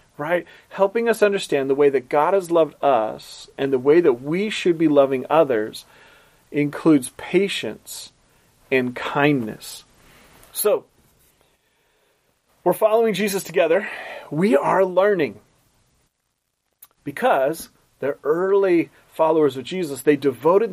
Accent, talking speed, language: American, 115 wpm, English